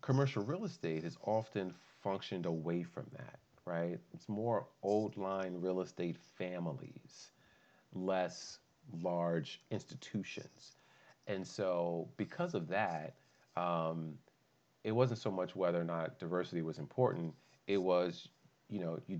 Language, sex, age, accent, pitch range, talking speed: English, male, 40-59, American, 80-100 Hz, 125 wpm